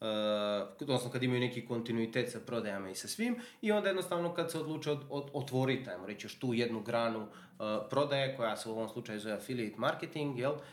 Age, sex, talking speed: 30-49, male, 205 wpm